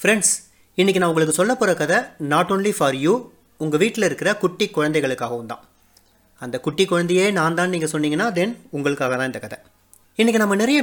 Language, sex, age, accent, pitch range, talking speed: Tamil, male, 30-49, native, 130-180 Hz, 175 wpm